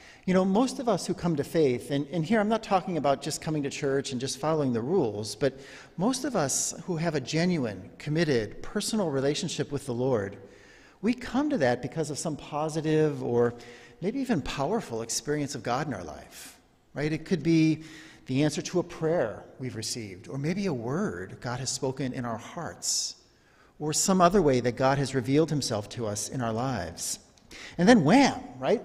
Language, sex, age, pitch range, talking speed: English, male, 50-69, 125-175 Hz, 200 wpm